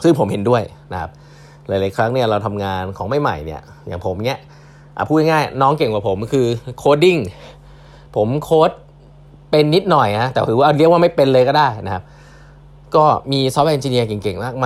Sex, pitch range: male, 110-150 Hz